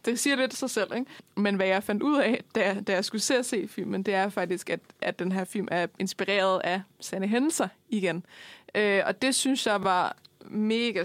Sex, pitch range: female, 185-210 Hz